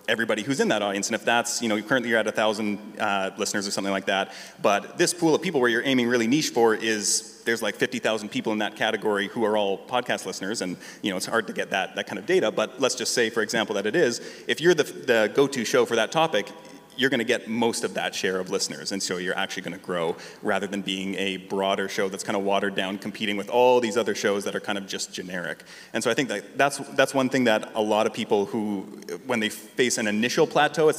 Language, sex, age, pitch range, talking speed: English, male, 30-49, 100-125 Hz, 260 wpm